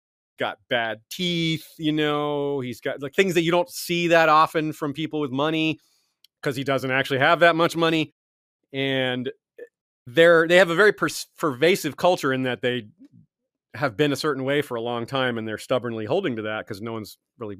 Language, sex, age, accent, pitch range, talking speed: English, male, 30-49, American, 115-165 Hz, 200 wpm